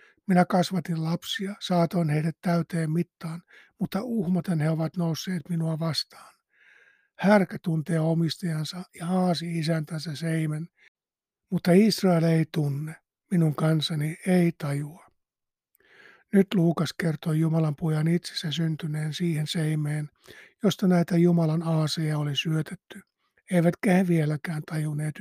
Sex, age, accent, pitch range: male, 60-79, native, 160-180 Hz